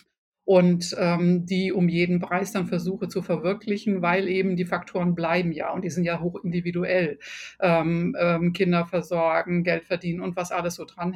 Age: 60-79